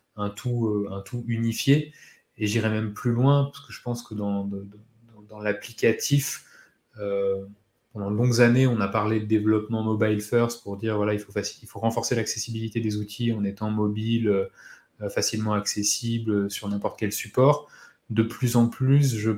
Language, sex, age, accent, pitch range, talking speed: French, male, 20-39, French, 105-120 Hz, 180 wpm